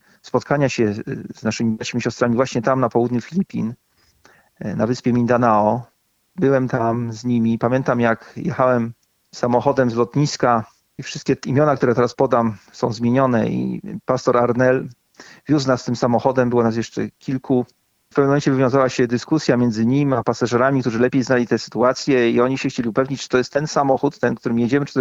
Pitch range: 120-135 Hz